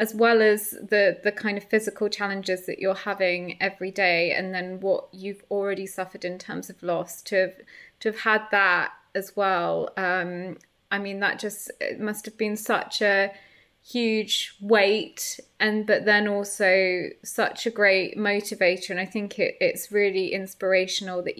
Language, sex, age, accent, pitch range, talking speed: English, female, 20-39, British, 185-210 Hz, 170 wpm